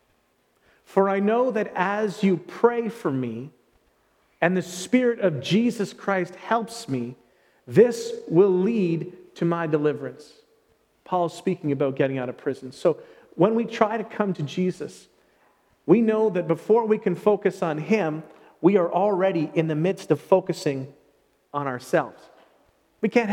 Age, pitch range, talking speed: 40-59, 155-210 Hz, 155 wpm